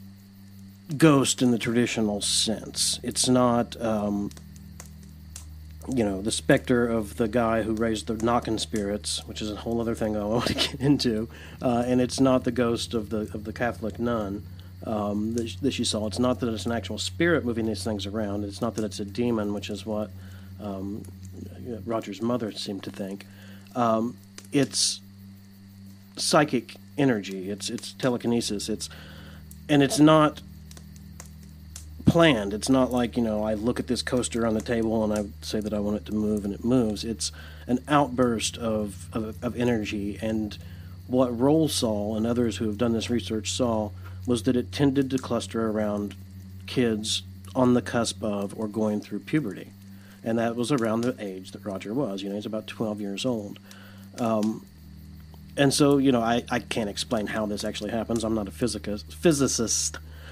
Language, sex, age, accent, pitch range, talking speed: English, male, 50-69, American, 95-120 Hz, 180 wpm